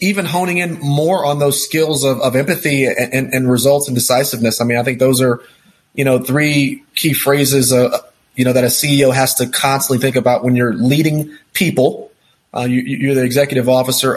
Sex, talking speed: male, 200 wpm